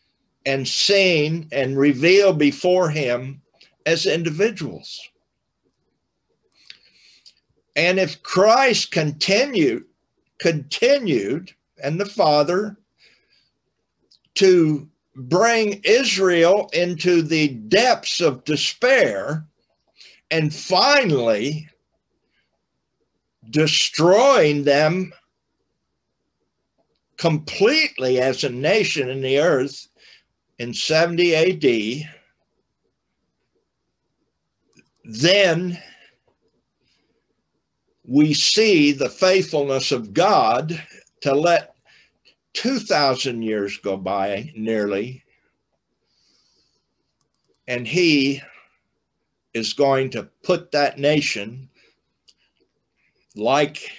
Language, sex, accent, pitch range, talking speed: English, male, American, 135-180 Hz, 70 wpm